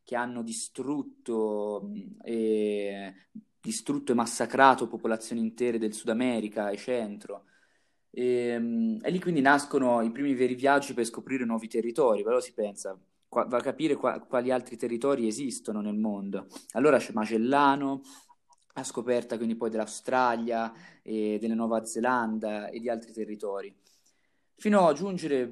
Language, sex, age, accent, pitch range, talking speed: Italian, male, 20-39, native, 115-140 Hz, 145 wpm